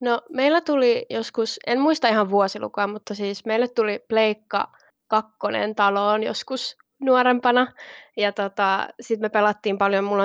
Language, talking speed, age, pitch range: Finnish, 140 wpm, 20-39, 200-235 Hz